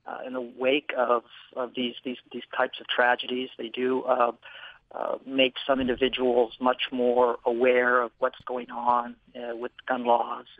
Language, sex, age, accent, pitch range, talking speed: English, male, 40-59, American, 120-140 Hz, 170 wpm